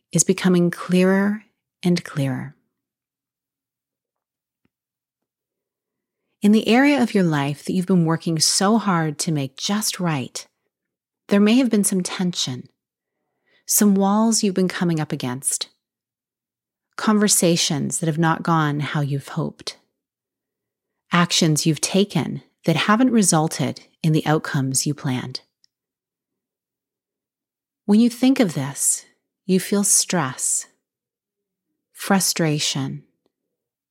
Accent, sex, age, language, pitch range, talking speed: American, female, 30-49, English, 160-205 Hz, 110 wpm